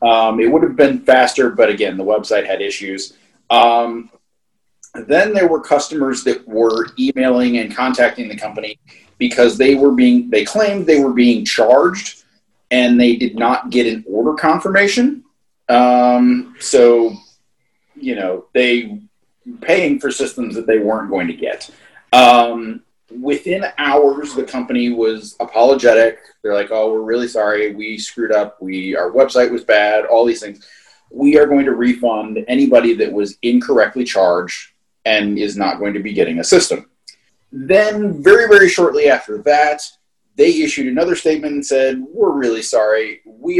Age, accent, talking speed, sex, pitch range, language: 30-49, American, 160 wpm, male, 115-170 Hz, English